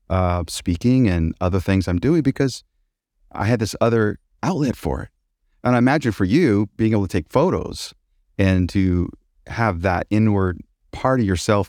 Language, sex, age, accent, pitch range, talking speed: English, male, 30-49, American, 90-120 Hz, 170 wpm